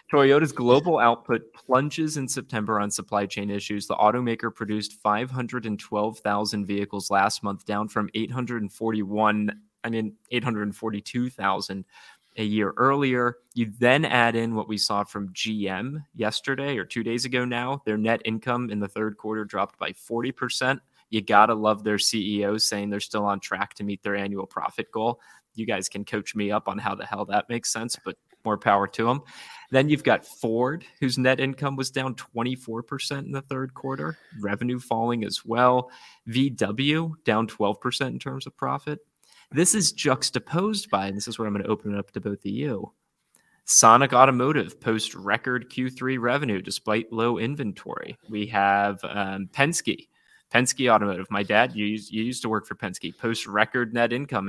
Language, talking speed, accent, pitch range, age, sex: English, 175 wpm, American, 105-130 Hz, 20-39, male